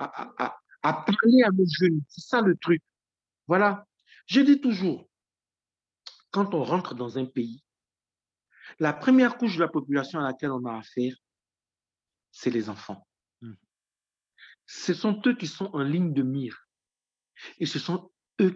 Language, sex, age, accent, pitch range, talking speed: French, male, 60-79, French, 115-180 Hz, 160 wpm